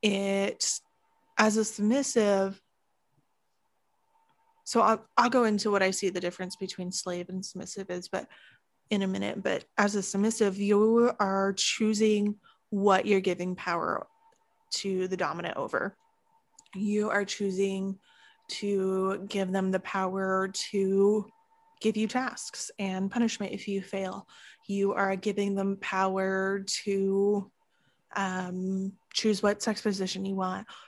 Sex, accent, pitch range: female, American, 190-220 Hz